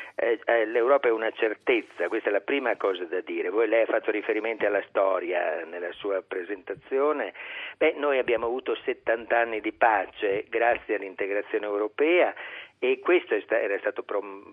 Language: Italian